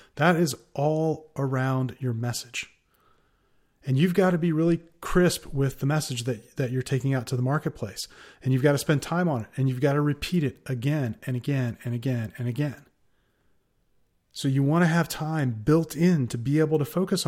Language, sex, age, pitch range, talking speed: English, male, 30-49, 125-160 Hz, 200 wpm